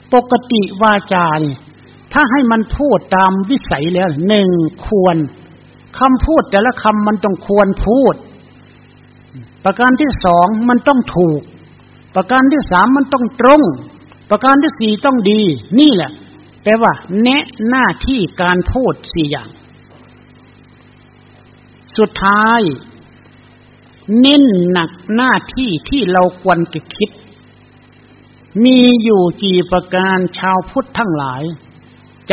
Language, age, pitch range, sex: Thai, 60-79, 160-230 Hz, male